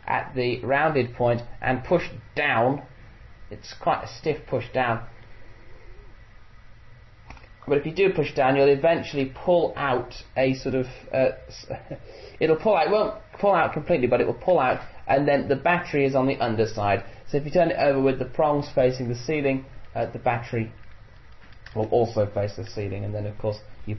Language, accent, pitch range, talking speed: English, British, 110-130 Hz, 190 wpm